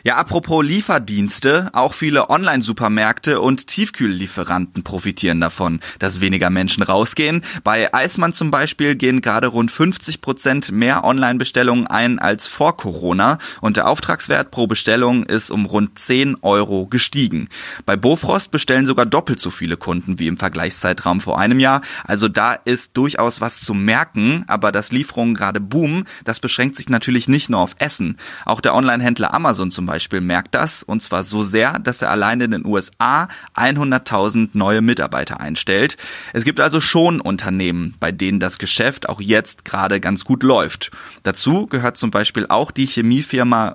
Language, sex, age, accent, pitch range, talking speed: German, male, 30-49, German, 100-135 Hz, 165 wpm